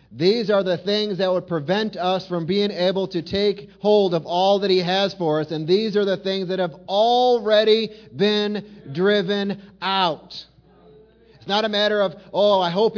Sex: male